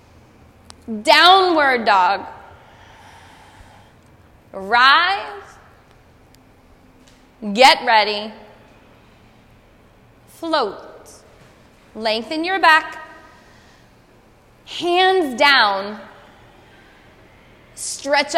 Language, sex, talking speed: English, female, 40 wpm